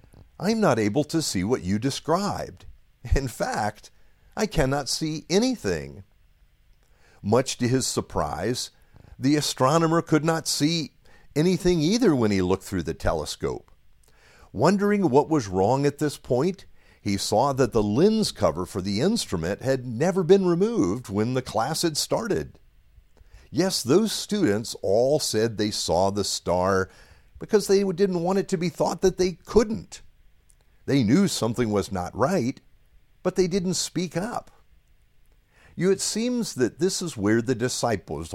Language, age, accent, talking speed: English, 50-69, American, 150 wpm